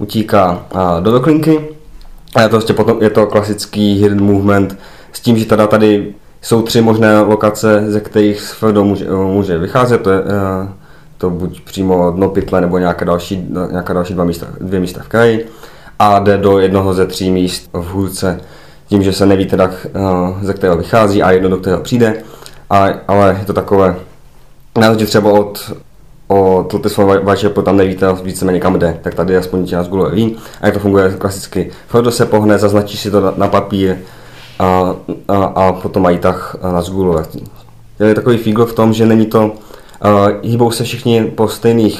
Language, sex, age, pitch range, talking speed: Czech, male, 20-39, 95-110 Hz, 175 wpm